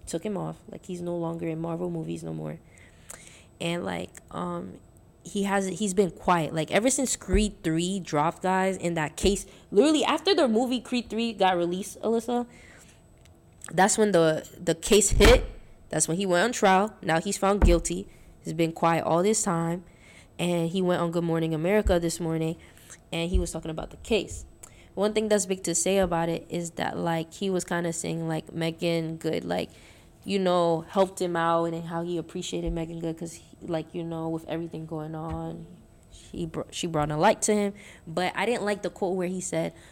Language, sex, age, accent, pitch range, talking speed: English, female, 20-39, American, 165-200 Hz, 200 wpm